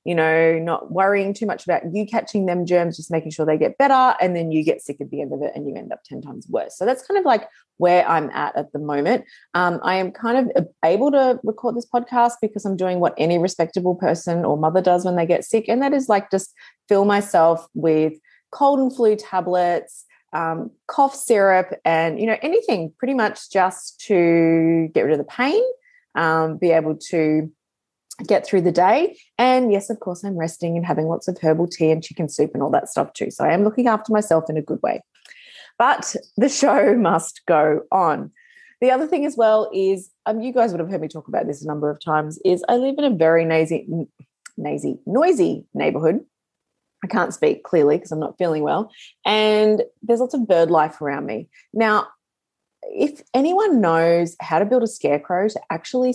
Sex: female